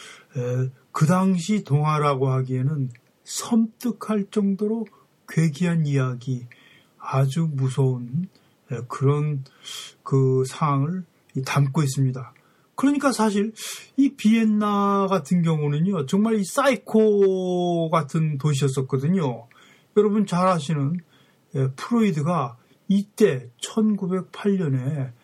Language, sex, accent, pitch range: Korean, male, native, 140-210 Hz